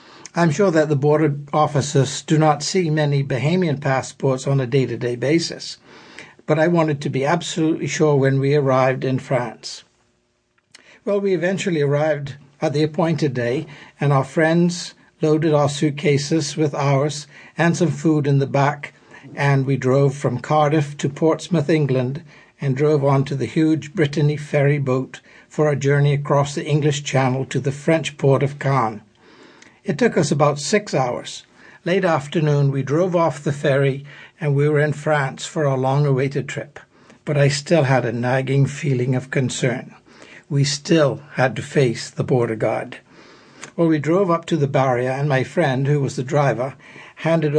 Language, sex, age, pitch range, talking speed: English, male, 60-79, 135-155 Hz, 170 wpm